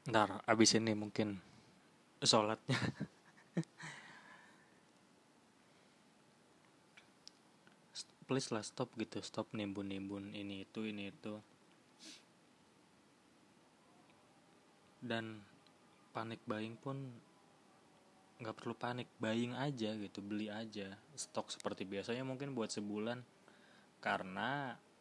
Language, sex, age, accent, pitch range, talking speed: Indonesian, male, 20-39, native, 110-155 Hz, 80 wpm